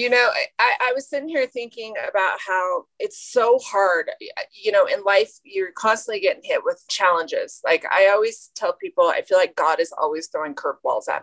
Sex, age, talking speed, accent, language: female, 30-49, 200 wpm, American, English